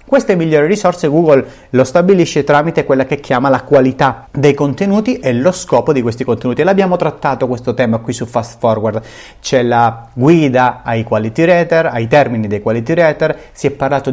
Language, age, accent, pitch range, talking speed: Italian, 30-49, native, 120-165 Hz, 185 wpm